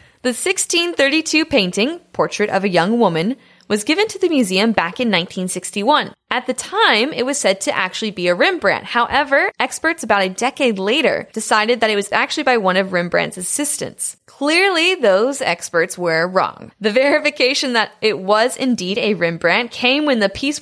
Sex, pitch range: female, 190-265 Hz